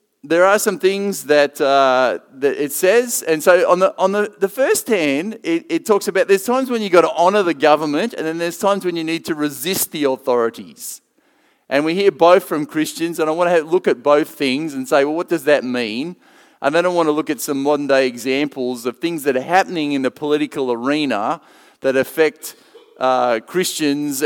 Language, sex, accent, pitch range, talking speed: English, male, Australian, 130-185 Hz, 220 wpm